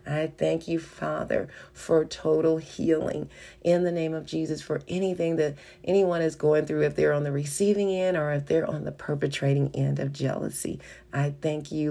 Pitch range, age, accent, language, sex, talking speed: 150-185 Hz, 40-59, American, English, female, 185 wpm